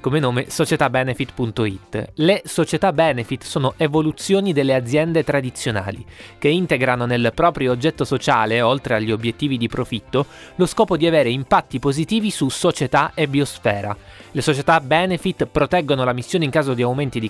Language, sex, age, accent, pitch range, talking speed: Italian, male, 20-39, native, 120-160 Hz, 150 wpm